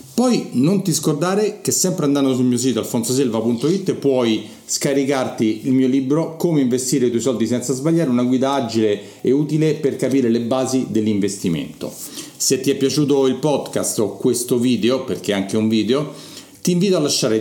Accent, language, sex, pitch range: native, Italian, male, 115-150 Hz